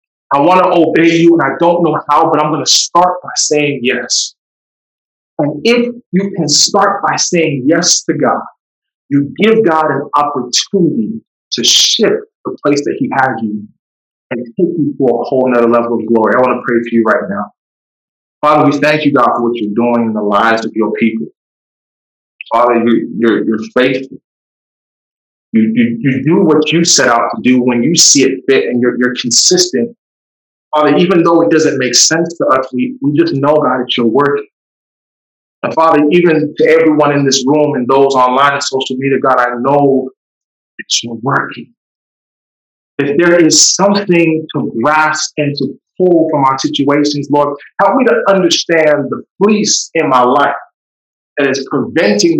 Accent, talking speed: American, 180 wpm